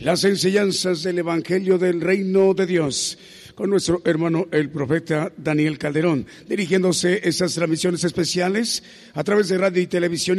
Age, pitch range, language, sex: 50-69, 175-195 Hz, Spanish, male